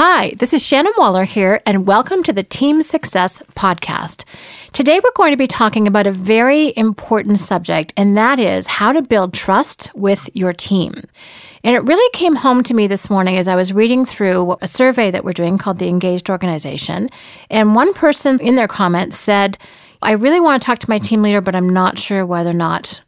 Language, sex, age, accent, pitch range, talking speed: English, female, 40-59, American, 185-245 Hz, 210 wpm